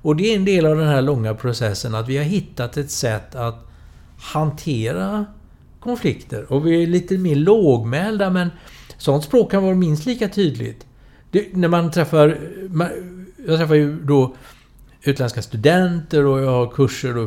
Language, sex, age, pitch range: English, male, 60-79, 125-180 Hz